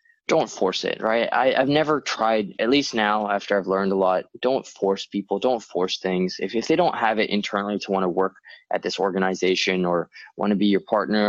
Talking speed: 220 wpm